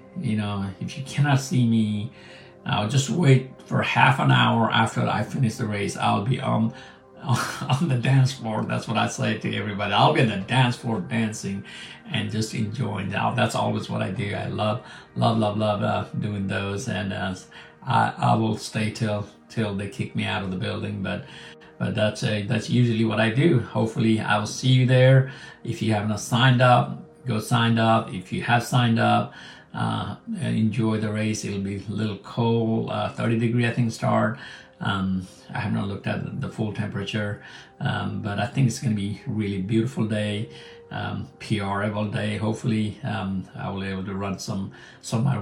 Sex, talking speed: male, 200 wpm